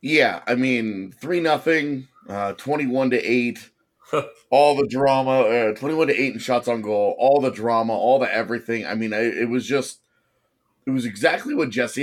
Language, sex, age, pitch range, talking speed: English, male, 30-49, 115-145 Hz, 185 wpm